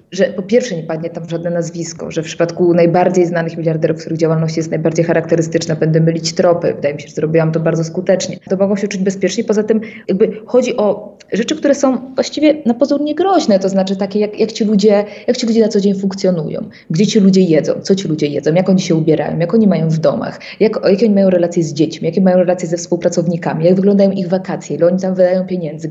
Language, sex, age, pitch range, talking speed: Polish, female, 20-39, 170-205 Hz, 225 wpm